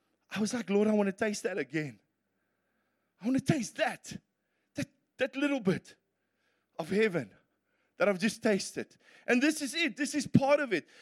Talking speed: 185 wpm